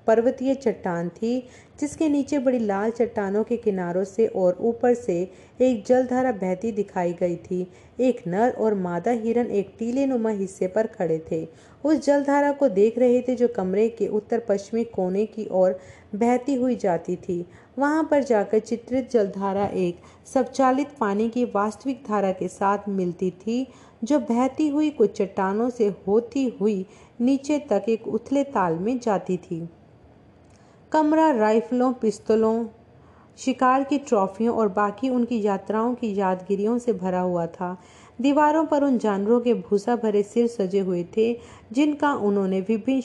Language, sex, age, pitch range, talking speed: Hindi, female, 40-59, 195-245 Hz, 155 wpm